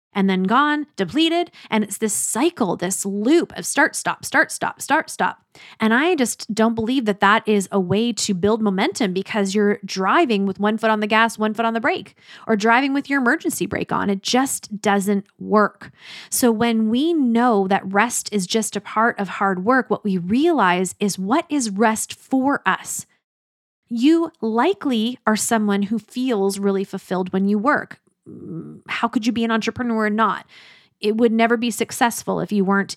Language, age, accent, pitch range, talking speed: English, 20-39, American, 200-245 Hz, 190 wpm